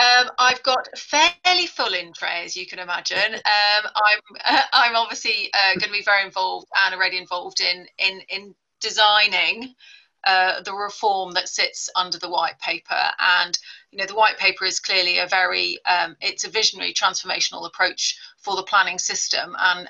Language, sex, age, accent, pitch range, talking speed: English, female, 30-49, British, 190-225 Hz, 175 wpm